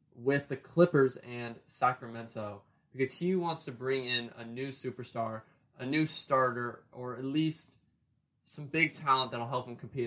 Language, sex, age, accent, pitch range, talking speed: English, male, 20-39, American, 115-155 Hz, 160 wpm